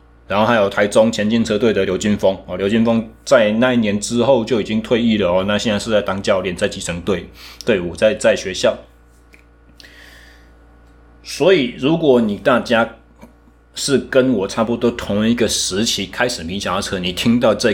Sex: male